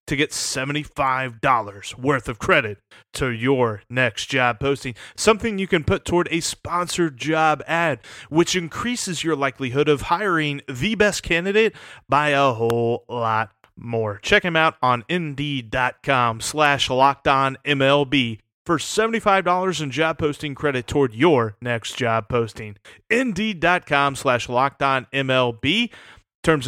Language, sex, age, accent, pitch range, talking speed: English, male, 30-49, American, 125-170 Hz, 125 wpm